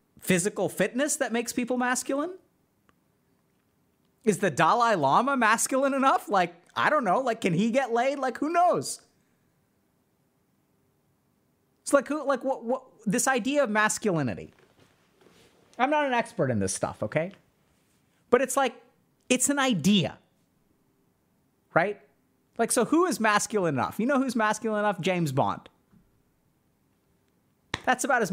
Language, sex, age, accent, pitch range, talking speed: English, male, 30-49, American, 180-260 Hz, 140 wpm